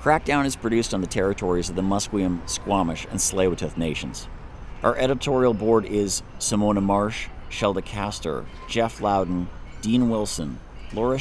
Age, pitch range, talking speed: 50-69, 90-115 Hz, 135 wpm